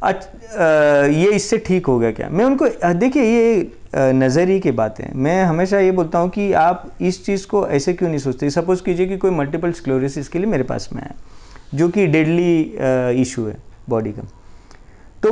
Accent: native